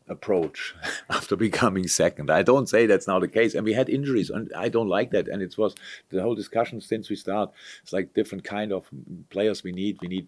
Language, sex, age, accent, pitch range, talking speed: English, male, 50-69, German, 85-105 Hz, 230 wpm